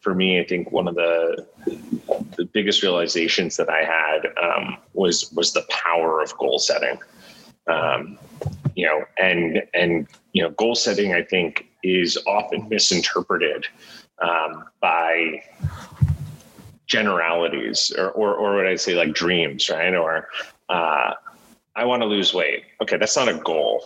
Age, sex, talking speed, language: 30-49, male, 150 wpm, English